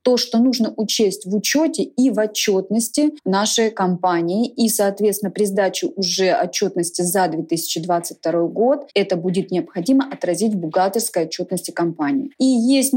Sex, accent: female, native